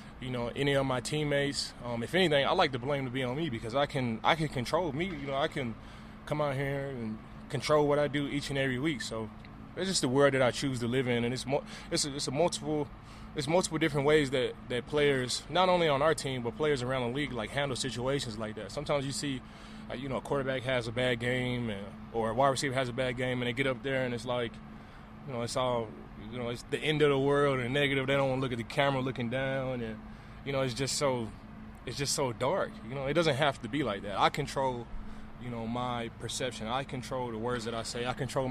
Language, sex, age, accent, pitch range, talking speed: English, male, 20-39, American, 120-140 Hz, 260 wpm